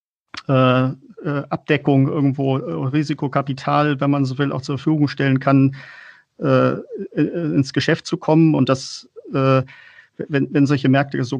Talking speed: 145 wpm